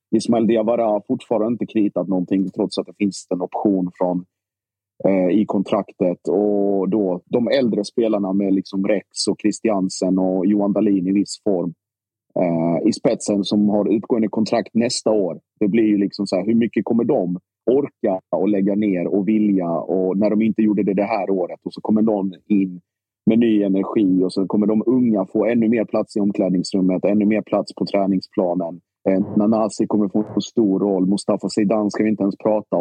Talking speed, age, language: 190 wpm, 30-49, Swedish